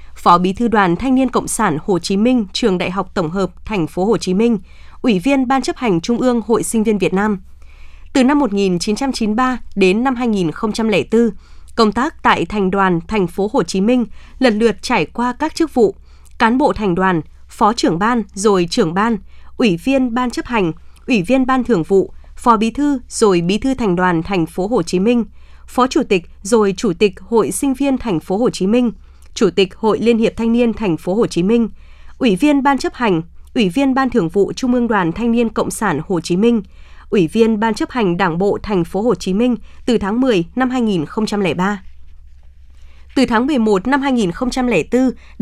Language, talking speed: Vietnamese, 205 wpm